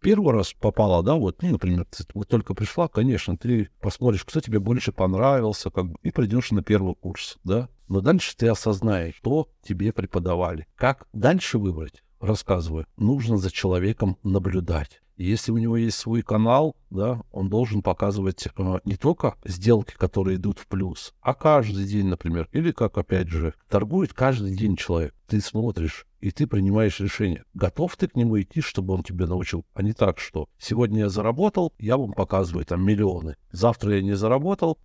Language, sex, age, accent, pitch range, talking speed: Russian, male, 60-79, native, 90-115 Hz, 175 wpm